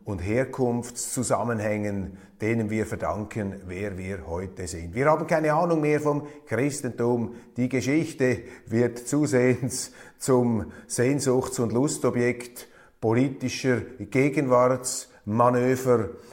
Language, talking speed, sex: German, 95 wpm, male